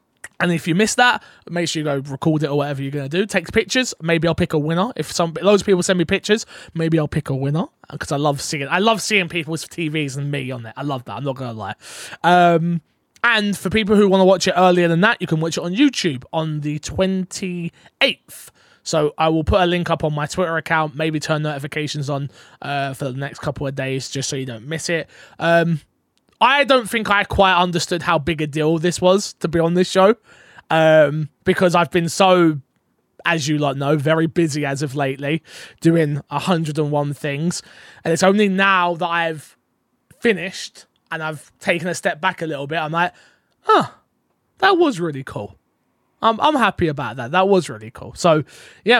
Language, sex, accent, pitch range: English, male, British, 150-185 Hz